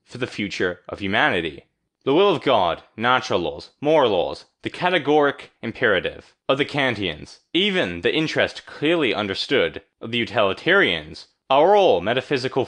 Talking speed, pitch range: 140 wpm, 105-155 Hz